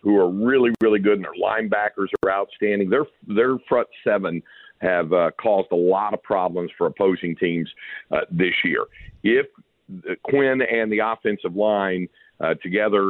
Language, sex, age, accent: English, male, 50-69, American